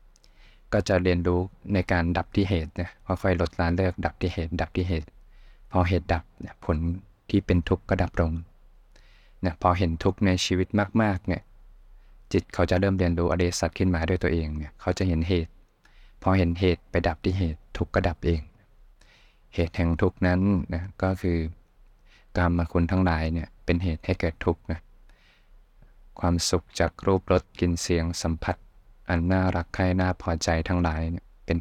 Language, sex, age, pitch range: Thai, male, 20-39, 85-95 Hz